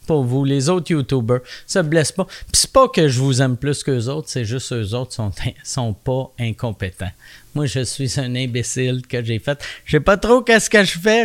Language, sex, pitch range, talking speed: French, male, 130-185 Hz, 240 wpm